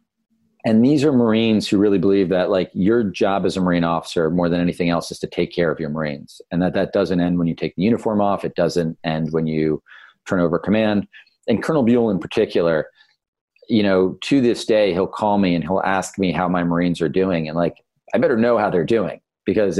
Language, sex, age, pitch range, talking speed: English, male, 40-59, 90-105 Hz, 230 wpm